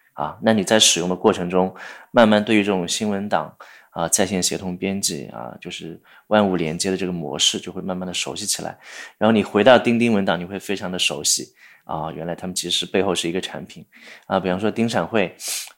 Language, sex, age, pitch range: Chinese, male, 20-39, 90-110 Hz